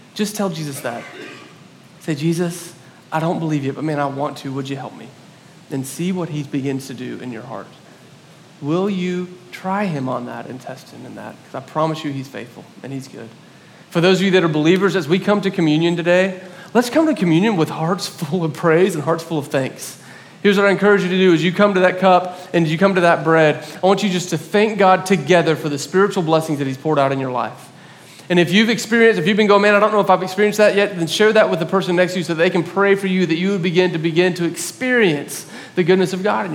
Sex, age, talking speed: male, 40-59, 260 wpm